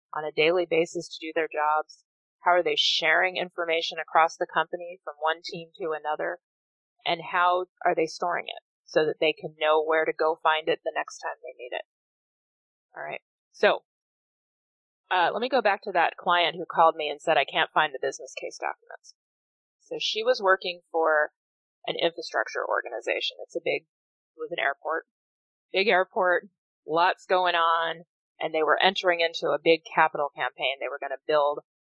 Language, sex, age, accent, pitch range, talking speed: English, female, 30-49, American, 160-215 Hz, 190 wpm